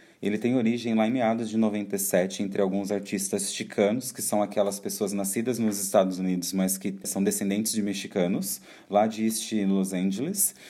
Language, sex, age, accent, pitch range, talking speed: Portuguese, male, 30-49, Brazilian, 105-130 Hz, 175 wpm